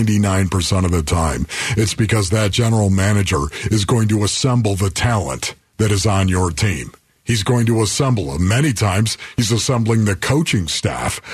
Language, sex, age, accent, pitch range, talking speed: English, male, 50-69, American, 100-125 Hz, 165 wpm